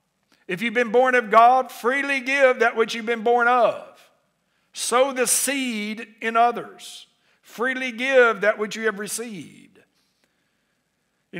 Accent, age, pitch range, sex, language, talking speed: American, 60-79, 215-255 Hz, male, English, 140 wpm